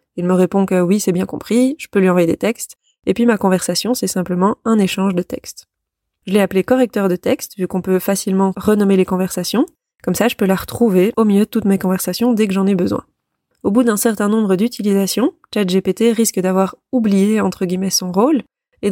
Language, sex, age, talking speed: French, female, 20-39, 225 wpm